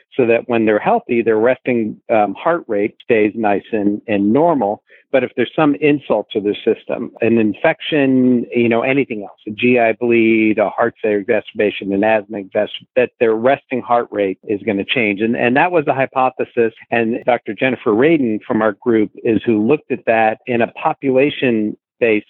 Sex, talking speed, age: male, 185 wpm, 50-69